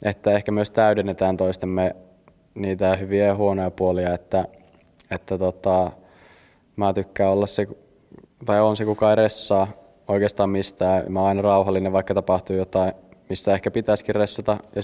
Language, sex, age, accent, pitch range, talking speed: Finnish, male, 20-39, native, 95-105 Hz, 145 wpm